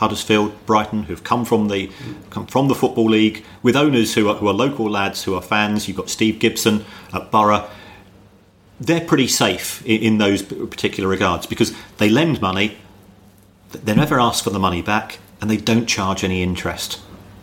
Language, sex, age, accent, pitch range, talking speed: English, male, 40-59, British, 95-110 Hz, 185 wpm